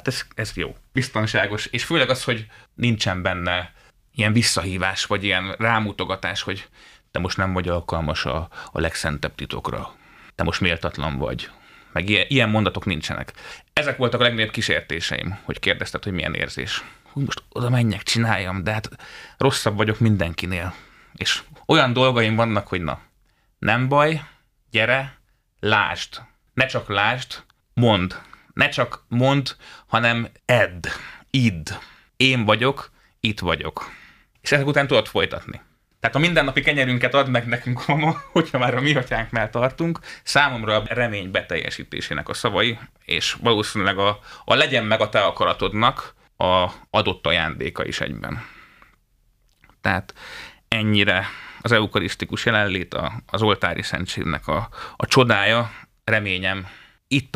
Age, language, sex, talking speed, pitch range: 30-49, Hungarian, male, 135 wpm, 95-125 Hz